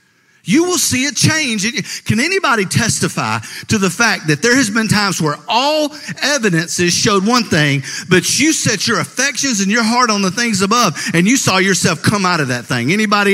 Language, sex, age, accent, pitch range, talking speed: English, male, 50-69, American, 185-260 Hz, 200 wpm